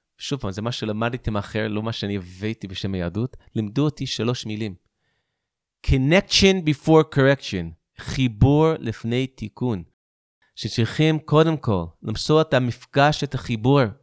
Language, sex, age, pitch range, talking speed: Hebrew, male, 30-49, 110-155 Hz, 130 wpm